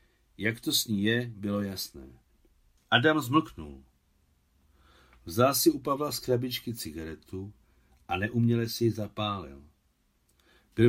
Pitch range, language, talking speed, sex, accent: 85-125 Hz, Czech, 120 wpm, male, native